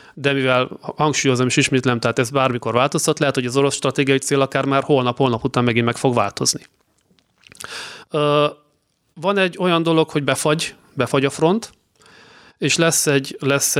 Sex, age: male, 30-49